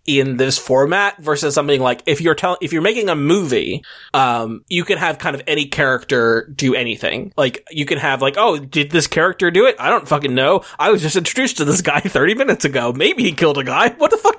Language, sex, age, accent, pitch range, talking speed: English, male, 20-39, American, 125-180 Hz, 240 wpm